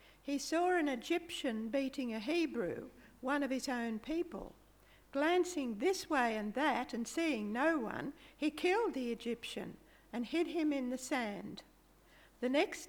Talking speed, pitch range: 155 wpm, 235-310 Hz